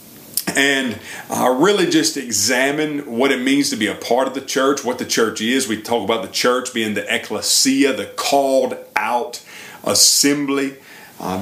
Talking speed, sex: 175 wpm, male